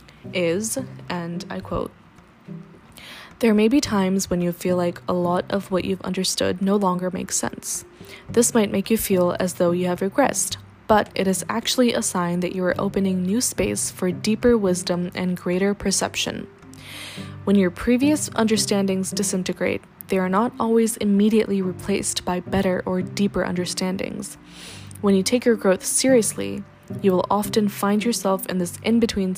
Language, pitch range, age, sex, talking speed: English, 180-205 Hz, 20-39, female, 165 wpm